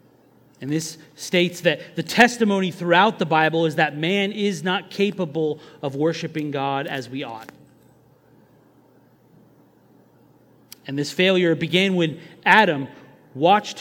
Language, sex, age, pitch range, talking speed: English, male, 30-49, 145-185 Hz, 120 wpm